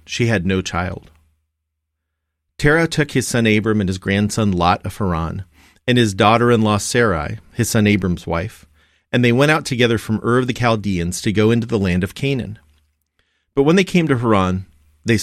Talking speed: 185 wpm